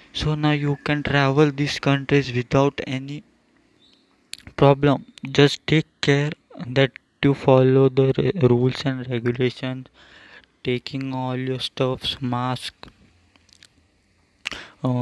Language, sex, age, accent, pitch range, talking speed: Hindi, male, 20-39, native, 125-140 Hz, 105 wpm